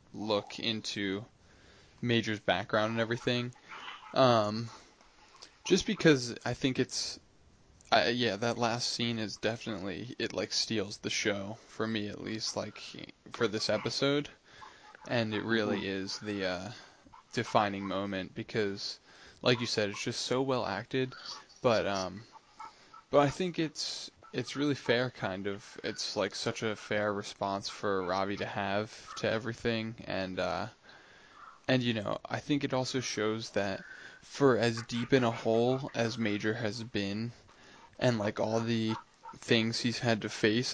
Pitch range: 105-120 Hz